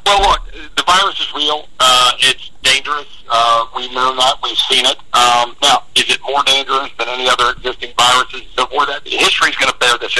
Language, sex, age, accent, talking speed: English, male, 50-69, American, 205 wpm